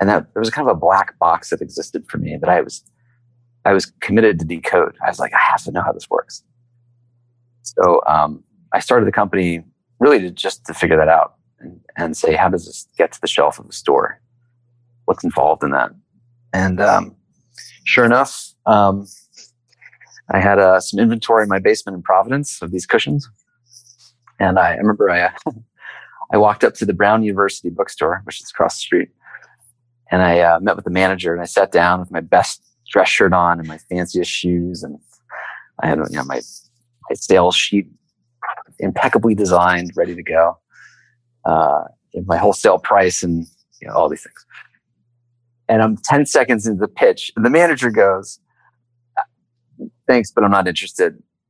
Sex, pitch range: male, 90-120 Hz